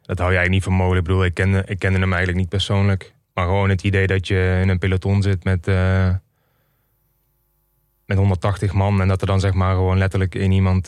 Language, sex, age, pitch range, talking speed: Dutch, male, 20-39, 95-110 Hz, 225 wpm